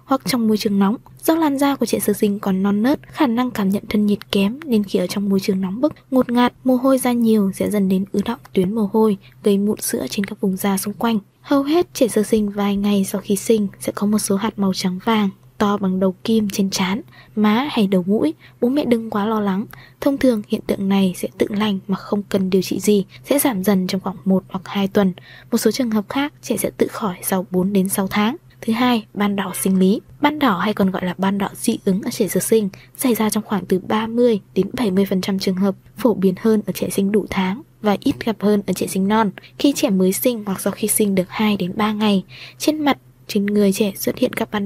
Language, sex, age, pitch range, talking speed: Vietnamese, female, 20-39, 195-230 Hz, 260 wpm